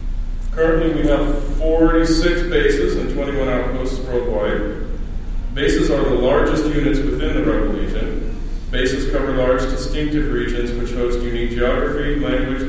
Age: 40-59